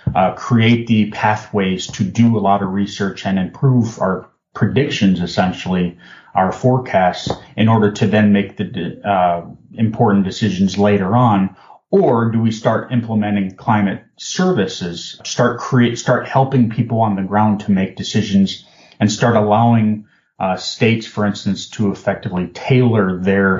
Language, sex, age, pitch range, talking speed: English, male, 30-49, 95-115 Hz, 145 wpm